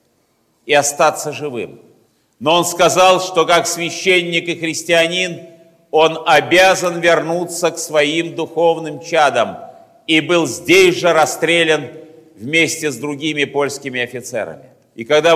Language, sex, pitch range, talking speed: Russian, male, 155-190 Hz, 115 wpm